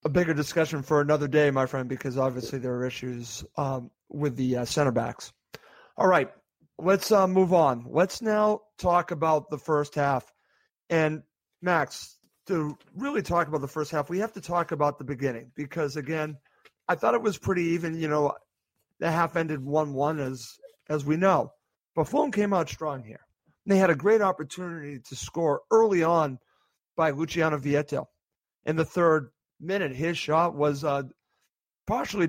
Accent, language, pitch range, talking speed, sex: American, English, 145-180 Hz, 175 wpm, male